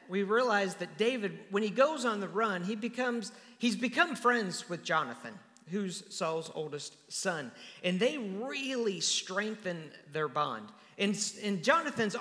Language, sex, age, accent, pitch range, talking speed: English, male, 50-69, American, 200-250 Hz, 145 wpm